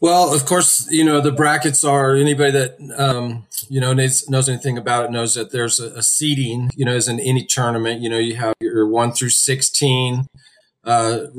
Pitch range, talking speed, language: 115-135 Hz, 205 wpm, English